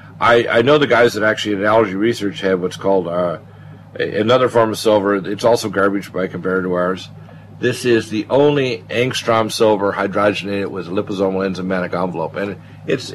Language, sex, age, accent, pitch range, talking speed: English, male, 50-69, American, 95-110 Hz, 180 wpm